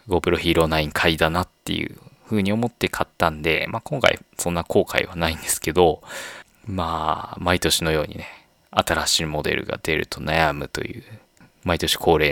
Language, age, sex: Japanese, 20-39, male